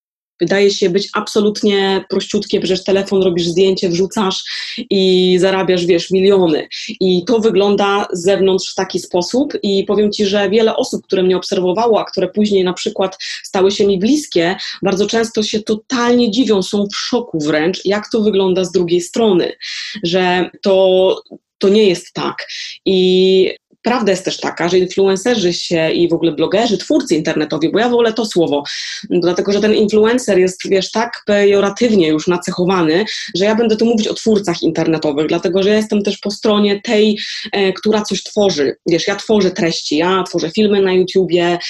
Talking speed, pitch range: 170 wpm, 180-210 Hz